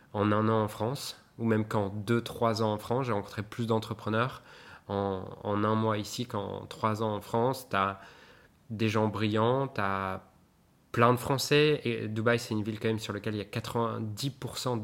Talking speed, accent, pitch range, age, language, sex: 195 wpm, French, 105-120 Hz, 20-39, French, male